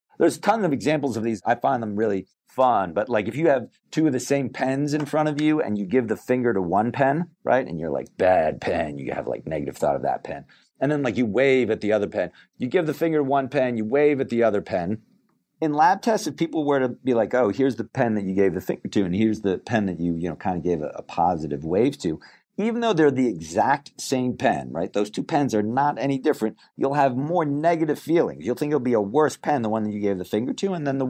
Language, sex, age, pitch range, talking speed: English, male, 40-59, 105-150 Hz, 275 wpm